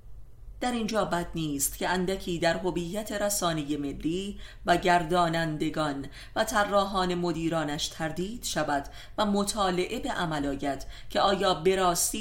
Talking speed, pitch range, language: 125 wpm, 145-190 Hz, Persian